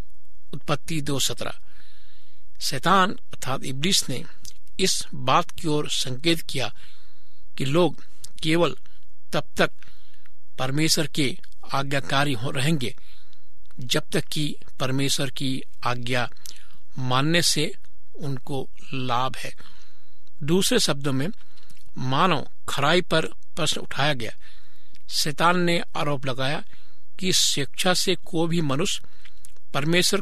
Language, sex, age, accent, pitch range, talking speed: Hindi, male, 60-79, native, 130-170 Hz, 105 wpm